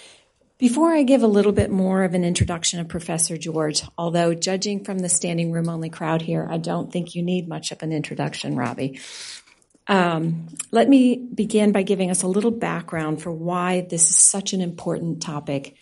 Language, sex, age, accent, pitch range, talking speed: English, female, 40-59, American, 160-200 Hz, 190 wpm